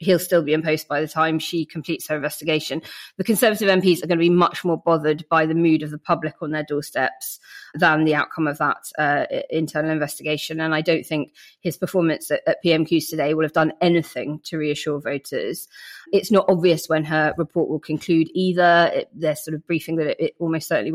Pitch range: 155-170 Hz